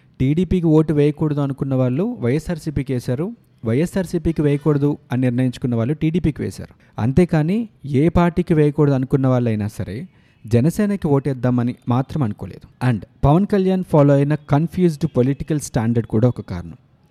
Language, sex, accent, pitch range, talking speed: Telugu, male, native, 120-155 Hz, 125 wpm